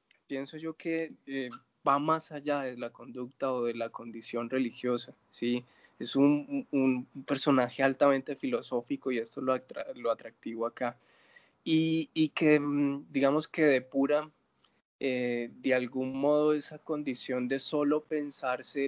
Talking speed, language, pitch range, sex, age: 145 wpm, Spanish, 125-140 Hz, male, 20-39